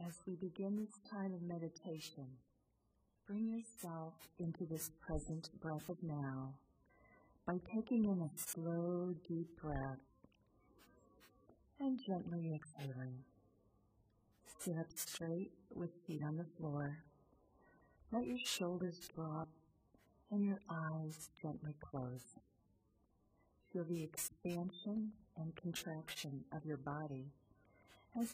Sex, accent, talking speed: female, American, 110 wpm